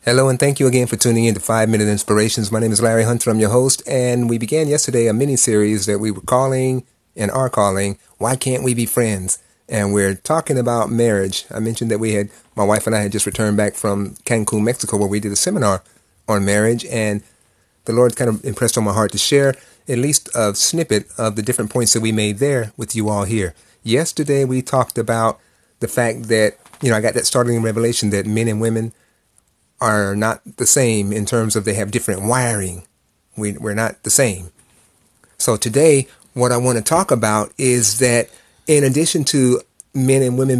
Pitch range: 105-125 Hz